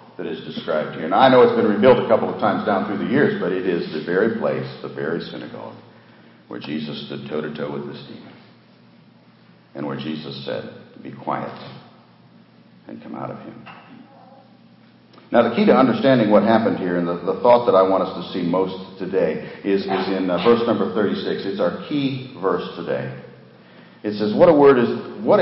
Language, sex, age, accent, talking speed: English, male, 60-79, American, 200 wpm